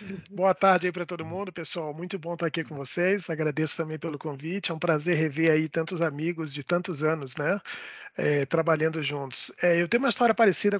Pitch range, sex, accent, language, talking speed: 145-170 Hz, male, Brazilian, Portuguese, 205 wpm